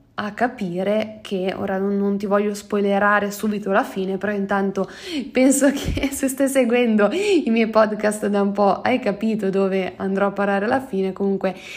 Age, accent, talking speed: 20-39, native, 170 wpm